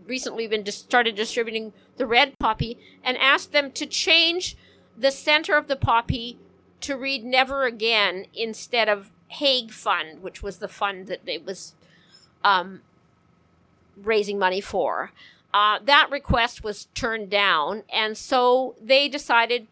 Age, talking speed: 50-69, 145 wpm